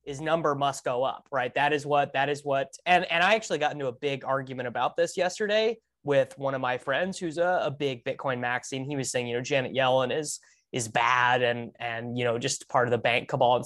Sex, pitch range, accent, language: male, 130-175 Hz, American, English